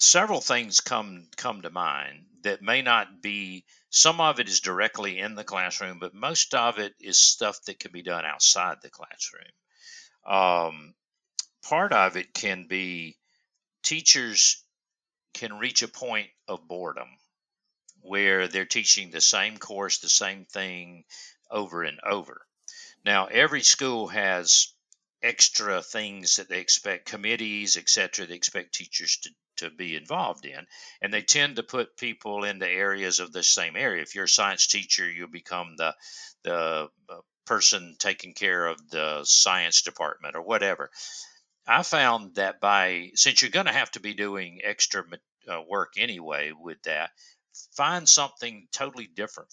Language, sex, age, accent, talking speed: English, male, 50-69, American, 155 wpm